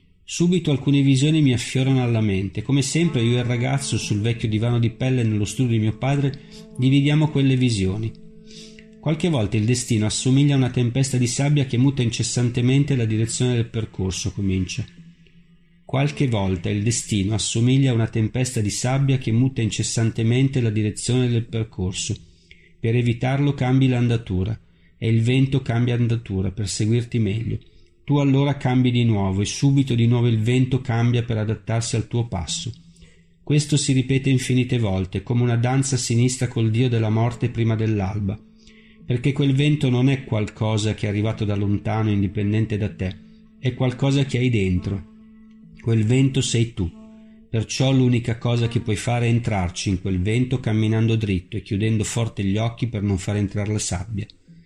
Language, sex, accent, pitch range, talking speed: Italian, male, native, 105-130 Hz, 165 wpm